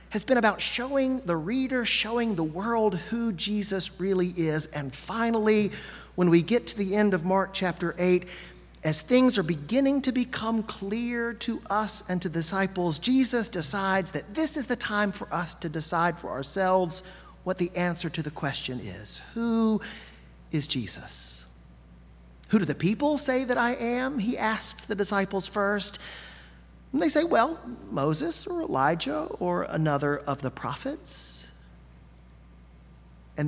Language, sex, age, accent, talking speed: English, male, 40-59, American, 155 wpm